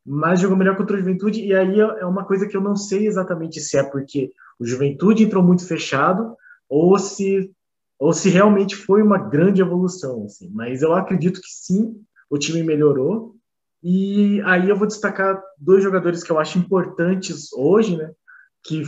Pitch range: 160-200 Hz